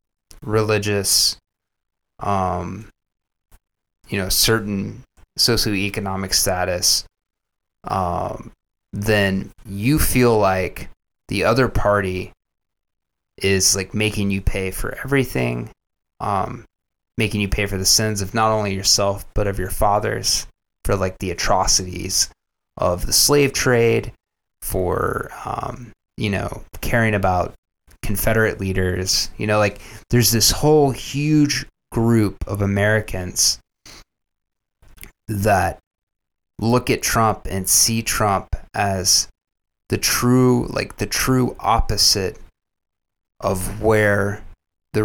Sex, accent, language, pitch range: male, American, English, 95-110 Hz